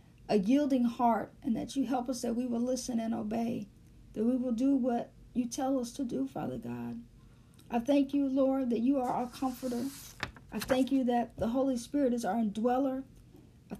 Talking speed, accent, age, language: 200 wpm, American, 50-69, English